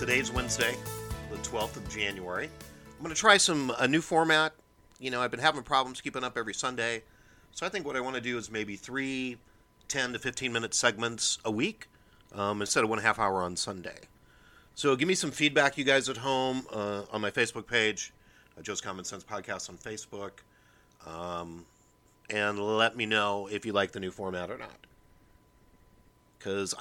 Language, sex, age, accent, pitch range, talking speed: English, male, 40-59, American, 105-135 Hz, 185 wpm